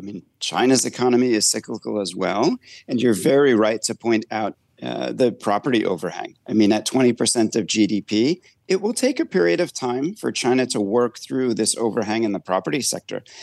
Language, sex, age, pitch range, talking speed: English, male, 40-59, 115-140 Hz, 190 wpm